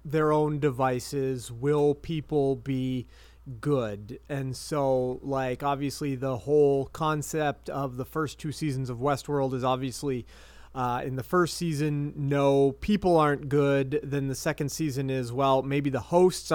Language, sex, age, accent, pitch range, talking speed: English, male, 30-49, American, 130-150 Hz, 150 wpm